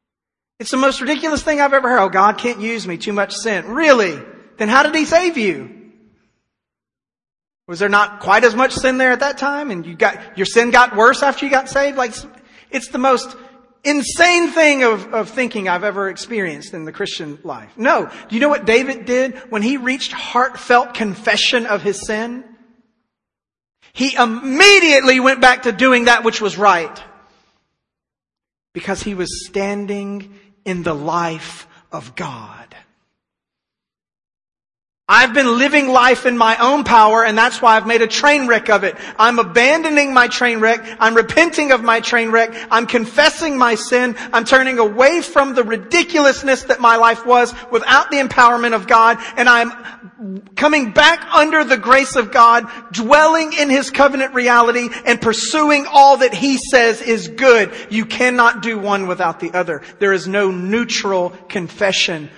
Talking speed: 170 wpm